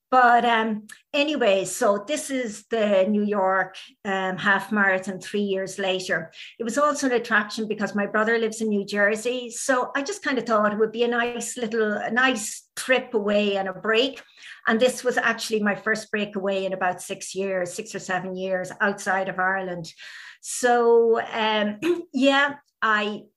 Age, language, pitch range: 50-69, English, 205-240 Hz